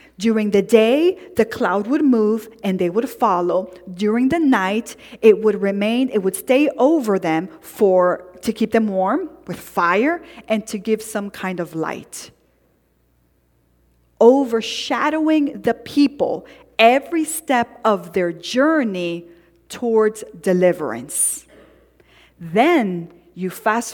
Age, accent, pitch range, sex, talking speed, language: 40-59, American, 190-265 Hz, female, 125 wpm, English